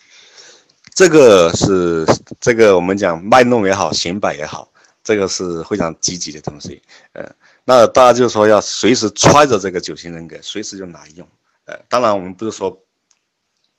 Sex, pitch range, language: male, 85-105 Hz, Chinese